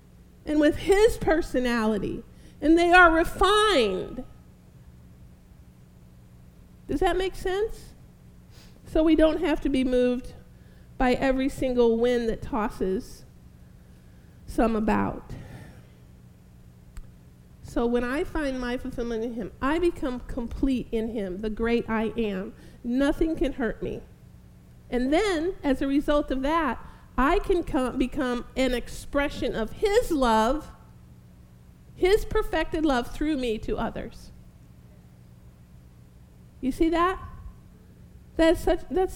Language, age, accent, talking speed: English, 50-69, American, 115 wpm